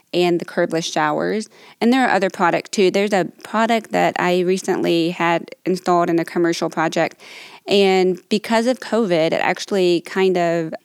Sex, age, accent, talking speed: female, 20-39, American, 165 wpm